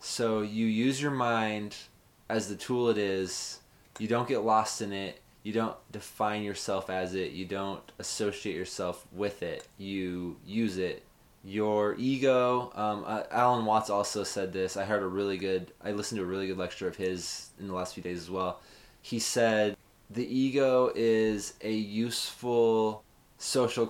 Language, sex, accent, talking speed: English, male, American, 175 wpm